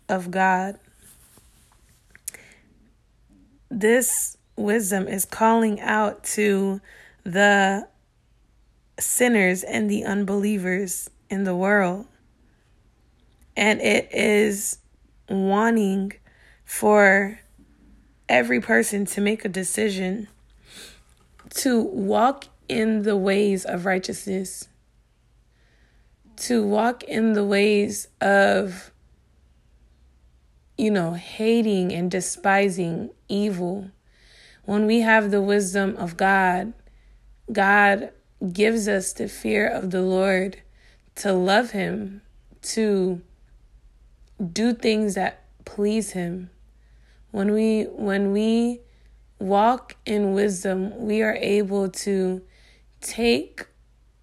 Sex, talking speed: female, 90 wpm